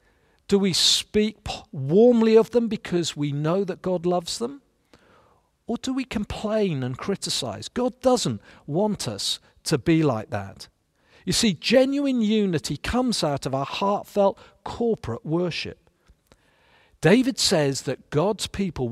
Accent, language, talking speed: British, English, 135 wpm